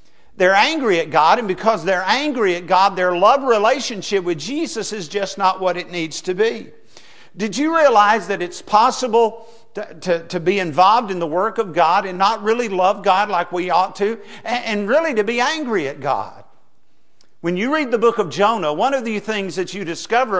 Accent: American